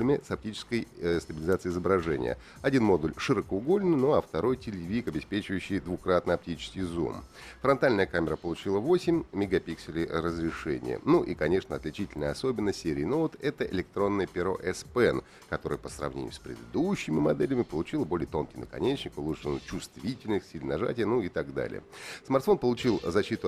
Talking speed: 140 wpm